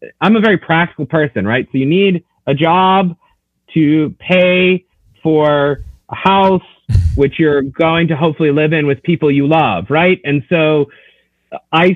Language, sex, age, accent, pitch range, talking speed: English, male, 30-49, American, 140-180 Hz, 155 wpm